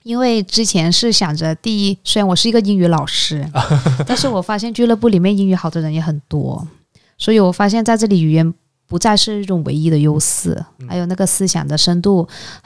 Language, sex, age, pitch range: Chinese, female, 20-39, 165-215 Hz